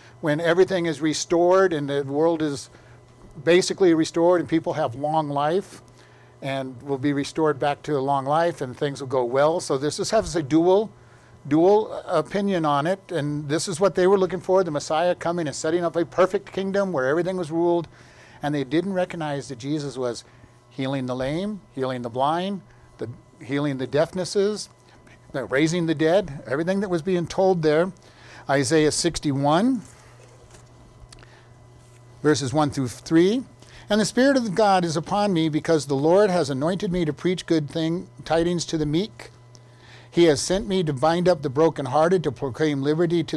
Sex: male